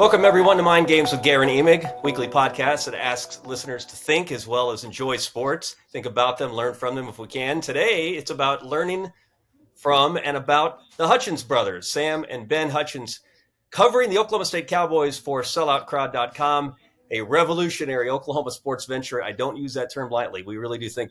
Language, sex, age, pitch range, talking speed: English, male, 30-49, 120-145 Hz, 185 wpm